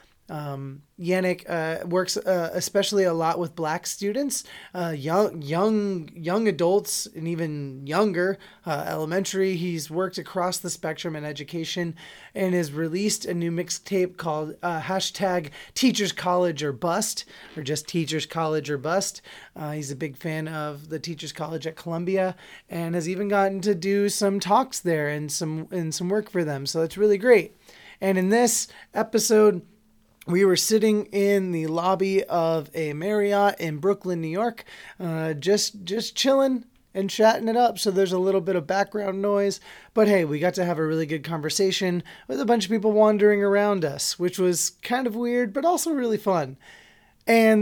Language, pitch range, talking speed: English, 165-205 Hz, 175 wpm